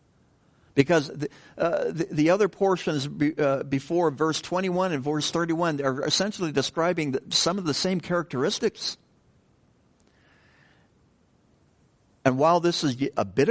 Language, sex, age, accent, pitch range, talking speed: English, male, 60-79, American, 130-165 Hz, 135 wpm